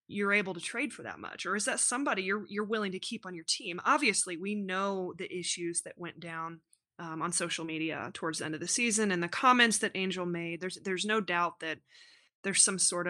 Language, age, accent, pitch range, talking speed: English, 20-39, American, 175-210 Hz, 235 wpm